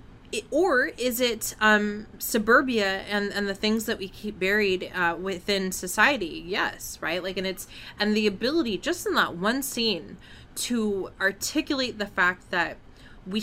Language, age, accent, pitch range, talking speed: English, 20-39, American, 175-215 Hz, 155 wpm